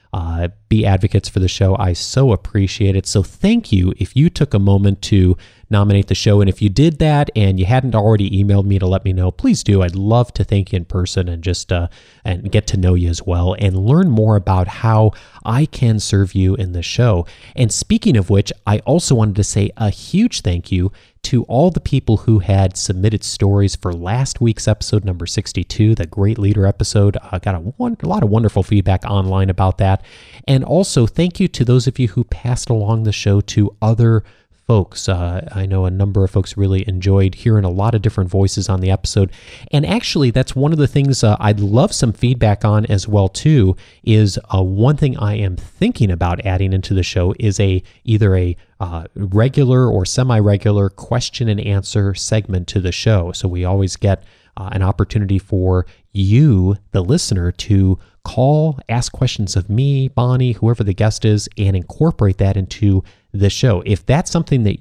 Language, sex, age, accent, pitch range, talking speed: English, male, 30-49, American, 95-115 Hz, 200 wpm